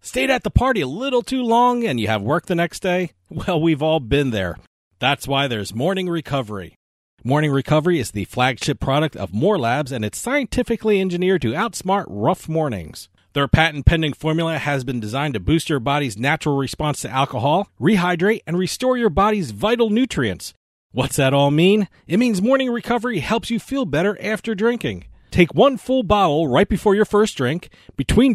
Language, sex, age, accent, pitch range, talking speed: English, male, 40-59, American, 135-225 Hz, 180 wpm